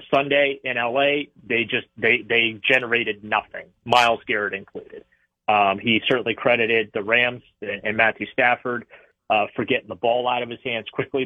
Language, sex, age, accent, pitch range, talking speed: English, male, 30-49, American, 115-135 Hz, 165 wpm